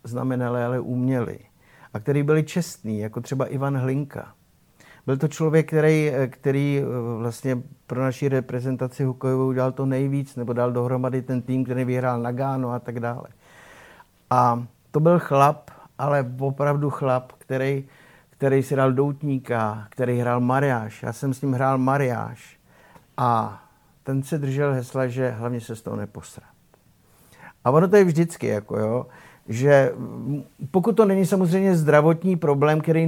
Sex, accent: male, native